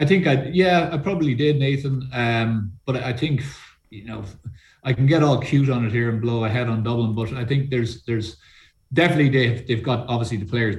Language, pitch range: English, 110-135 Hz